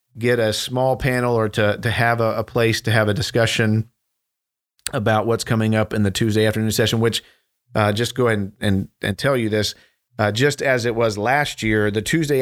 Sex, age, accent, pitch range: male, 40-59, American, 105-120 Hz